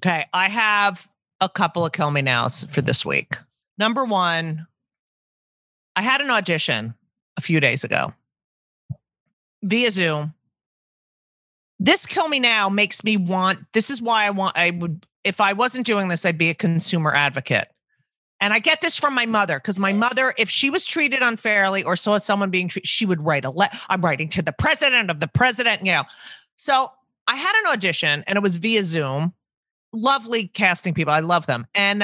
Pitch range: 165-220 Hz